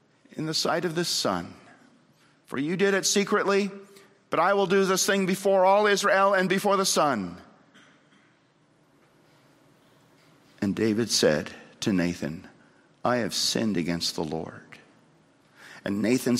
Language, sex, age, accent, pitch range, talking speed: English, male, 50-69, American, 95-150 Hz, 135 wpm